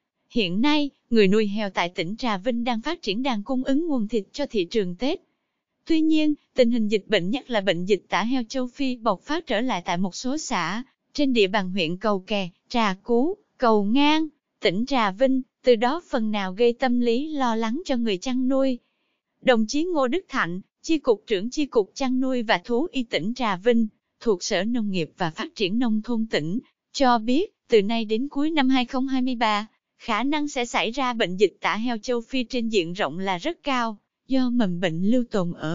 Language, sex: English, female